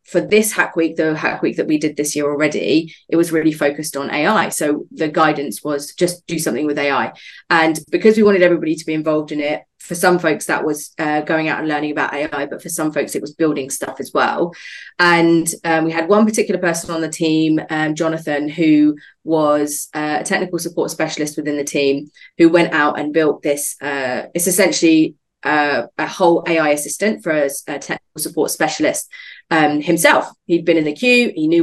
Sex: female